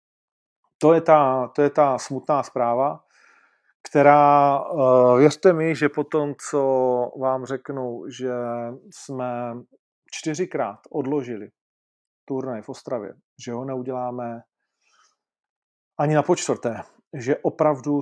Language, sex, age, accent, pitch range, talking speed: Czech, male, 40-59, native, 120-145 Hz, 105 wpm